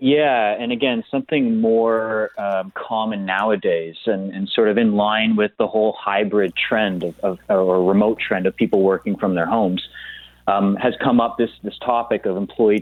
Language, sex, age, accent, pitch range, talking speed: English, male, 30-49, American, 95-110 Hz, 175 wpm